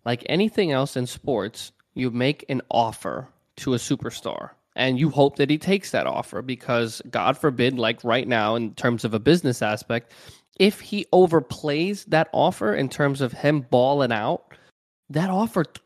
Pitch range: 120-160 Hz